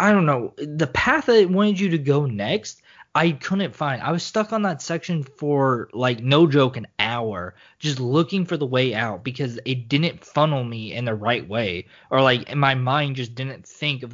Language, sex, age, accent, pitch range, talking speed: English, male, 20-39, American, 115-150 Hz, 210 wpm